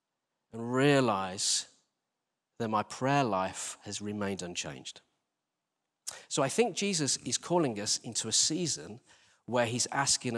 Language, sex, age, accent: English, male, 40-59, British